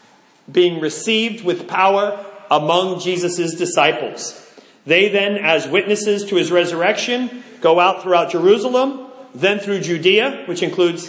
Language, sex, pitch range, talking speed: English, male, 155-215 Hz, 125 wpm